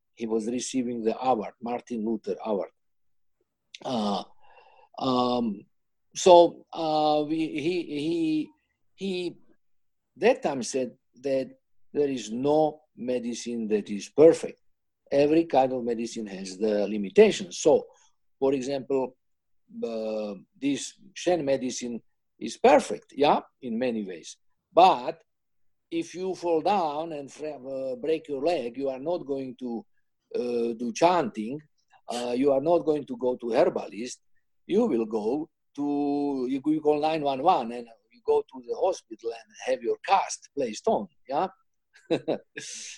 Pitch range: 120-175 Hz